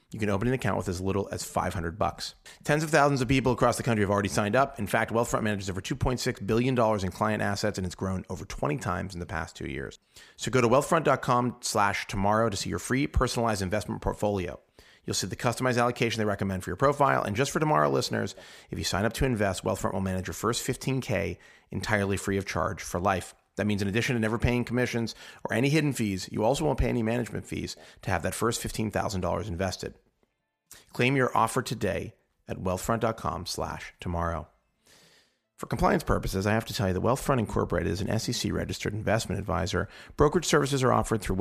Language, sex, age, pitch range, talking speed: English, male, 30-49, 95-120 Hz, 210 wpm